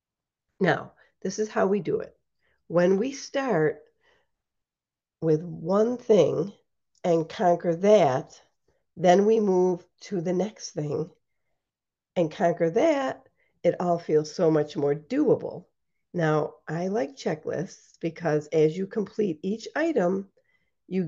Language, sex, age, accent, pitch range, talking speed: English, female, 50-69, American, 170-255 Hz, 125 wpm